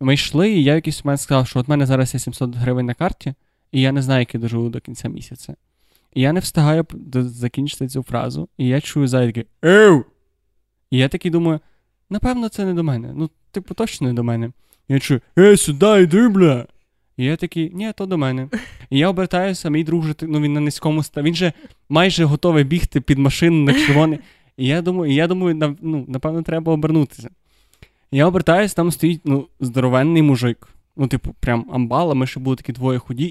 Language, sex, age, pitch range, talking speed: Ukrainian, male, 20-39, 130-170 Hz, 205 wpm